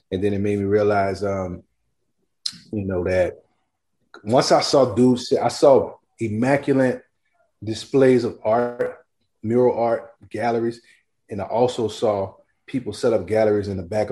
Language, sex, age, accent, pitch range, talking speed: English, male, 30-49, American, 105-125 Hz, 145 wpm